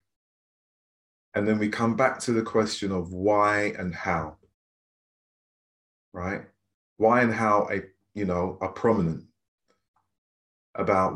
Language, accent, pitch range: English, British, 95-115 Hz